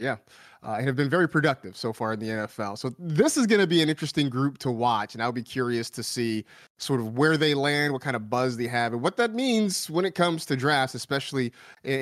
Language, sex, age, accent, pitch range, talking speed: English, male, 30-49, American, 135-175 Hz, 255 wpm